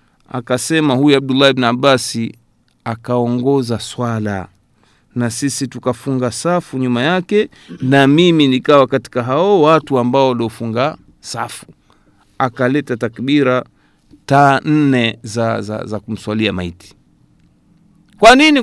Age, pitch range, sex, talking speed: 50-69, 130-195 Hz, male, 105 wpm